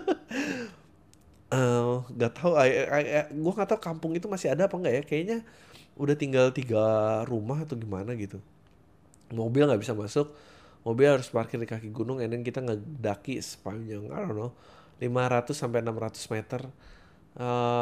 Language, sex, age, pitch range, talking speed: Indonesian, male, 20-39, 105-155 Hz, 150 wpm